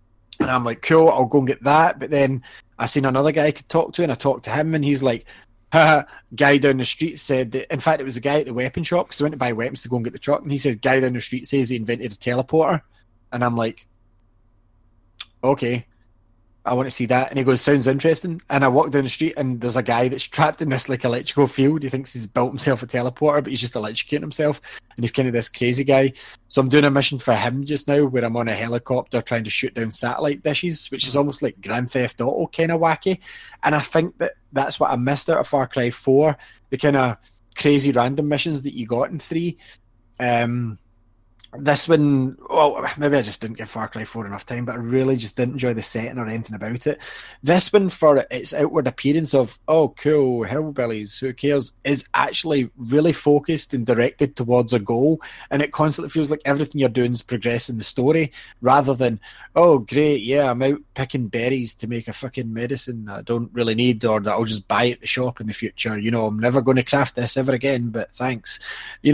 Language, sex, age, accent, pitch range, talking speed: English, male, 20-39, British, 120-145 Hz, 240 wpm